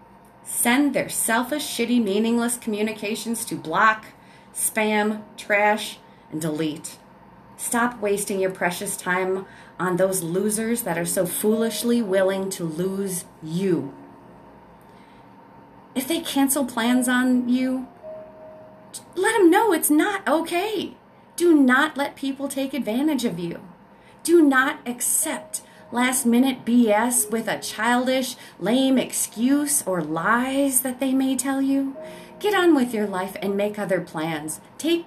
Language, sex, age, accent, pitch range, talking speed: English, female, 30-49, American, 195-270 Hz, 130 wpm